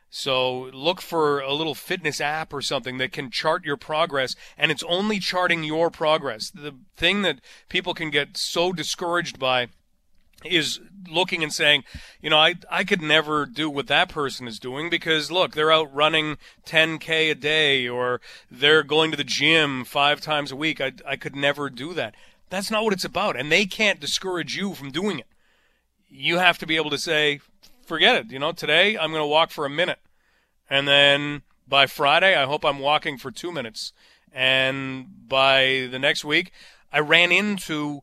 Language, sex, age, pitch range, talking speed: English, male, 40-59, 140-170 Hz, 190 wpm